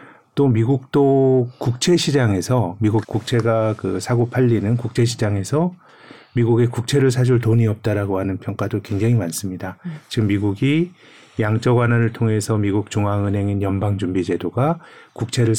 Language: Korean